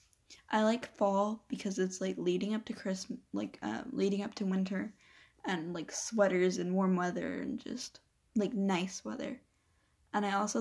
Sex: female